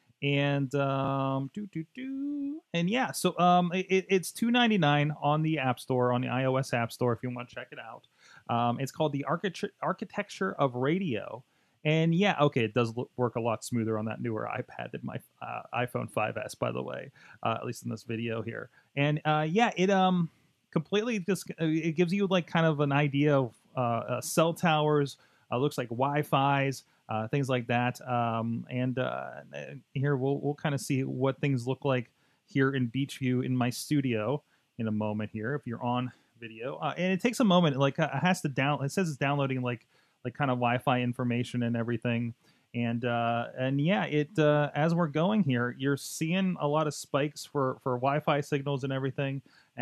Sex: male